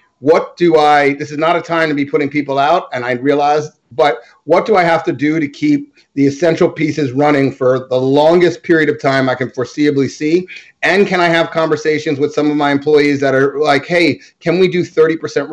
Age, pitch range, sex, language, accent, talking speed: 30-49, 140-170 Hz, male, English, American, 220 wpm